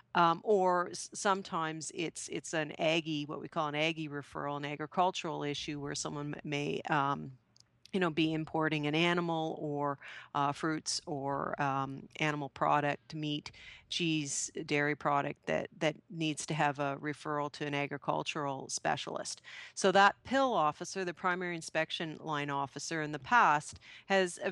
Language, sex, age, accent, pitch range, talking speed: English, female, 40-59, American, 145-165 Hz, 155 wpm